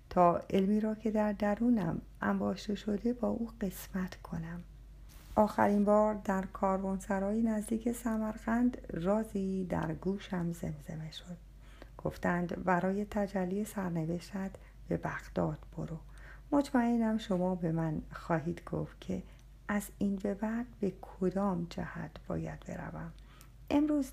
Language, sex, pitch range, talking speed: Persian, female, 165-215 Hz, 115 wpm